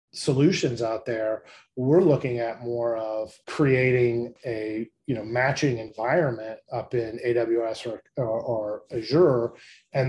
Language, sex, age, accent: English, male, 30-49, American